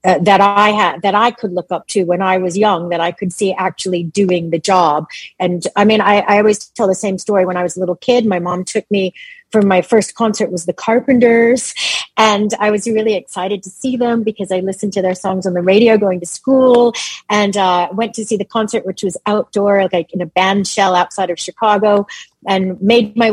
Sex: female